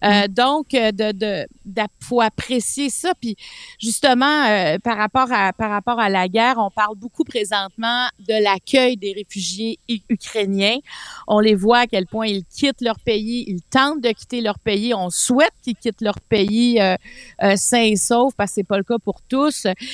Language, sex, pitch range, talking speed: French, female, 205-250 Hz, 190 wpm